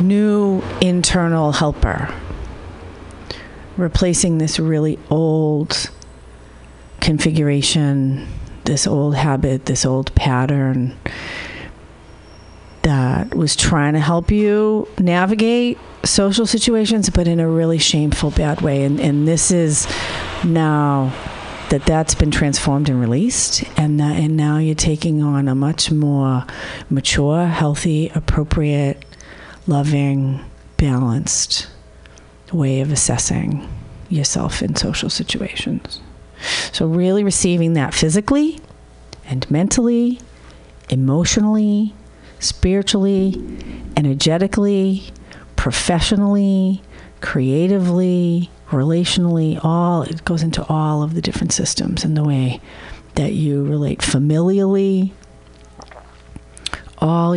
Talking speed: 95 wpm